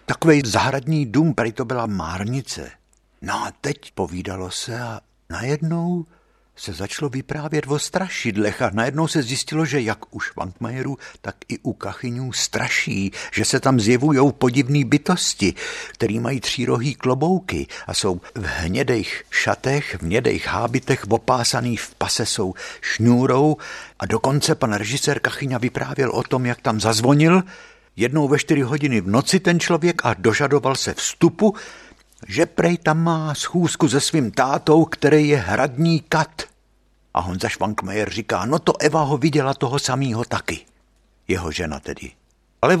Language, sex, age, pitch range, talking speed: Czech, male, 60-79, 115-155 Hz, 150 wpm